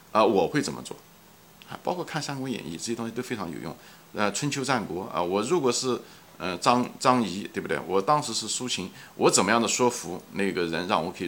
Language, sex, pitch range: Chinese, male, 115-160 Hz